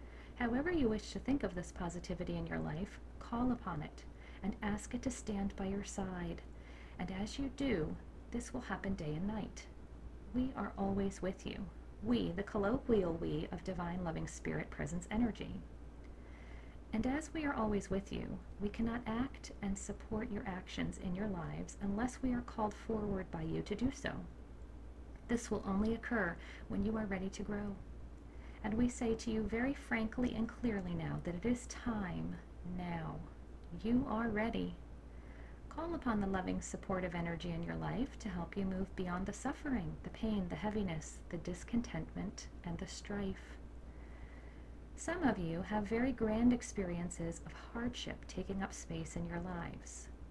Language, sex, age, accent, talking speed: English, female, 40-59, American, 170 wpm